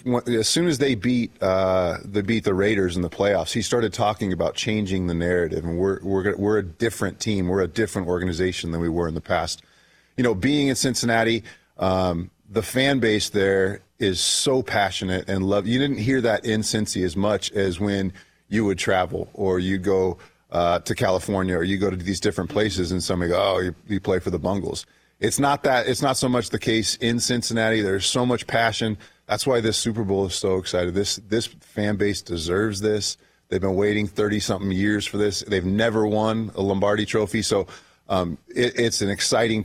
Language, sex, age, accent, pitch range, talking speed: English, male, 30-49, American, 95-115 Hz, 205 wpm